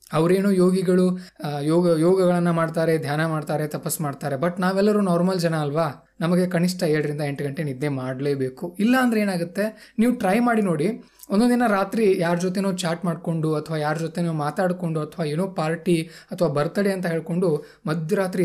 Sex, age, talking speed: male, 20-39, 150 wpm